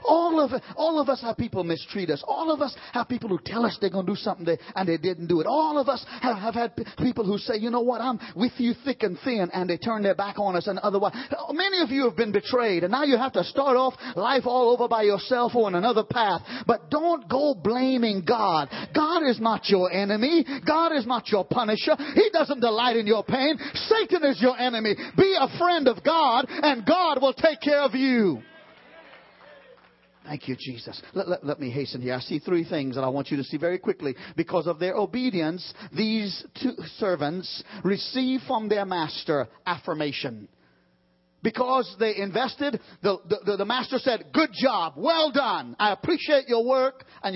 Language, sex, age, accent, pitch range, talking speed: English, male, 40-59, American, 185-275 Hz, 210 wpm